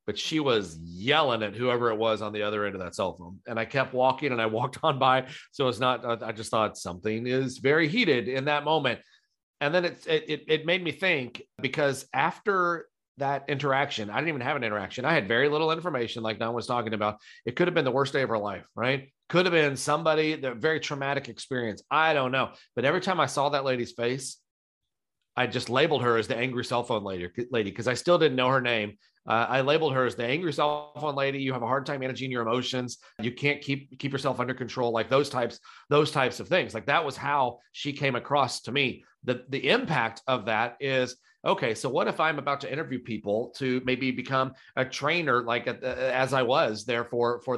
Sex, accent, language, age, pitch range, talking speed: male, American, English, 40-59, 120-145 Hz, 230 wpm